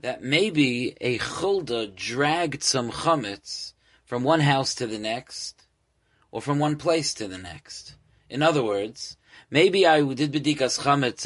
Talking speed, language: 150 wpm, English